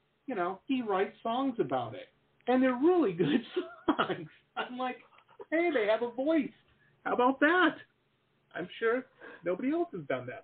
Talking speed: 165 wpm